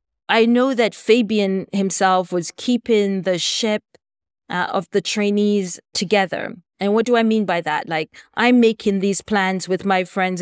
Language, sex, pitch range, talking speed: English, female, 180-210 Hz, 165 wpm